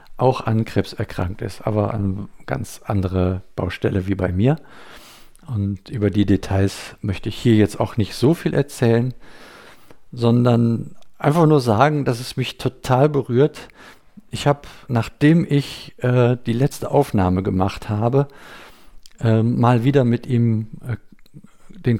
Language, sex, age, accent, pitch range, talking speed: German, male, 50-69, German, 110-140 Hz, 140 wpm